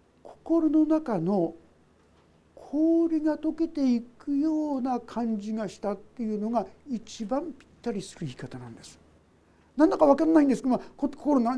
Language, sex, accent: Japanese, male, native